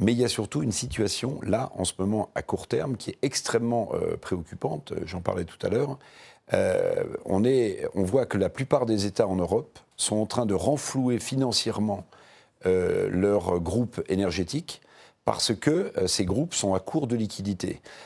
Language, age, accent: French, 50-69, French